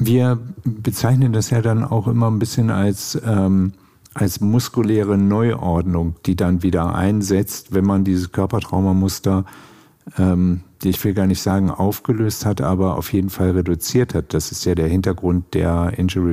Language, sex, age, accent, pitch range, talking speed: German, male, 50-69, German, 90-105 Hz, 155 wpm